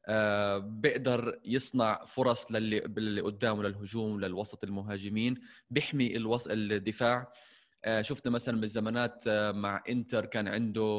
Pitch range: 105-135 Hz